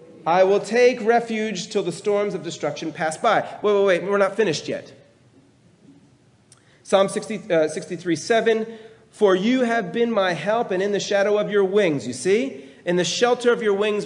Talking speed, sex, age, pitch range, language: 190 wpm, male, 30-49, 185-245 Hz, English